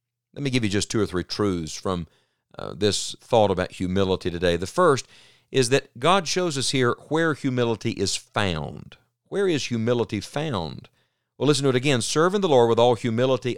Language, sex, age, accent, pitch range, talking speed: English, male, 50-69, American, 110-145 Hz, 190 wpm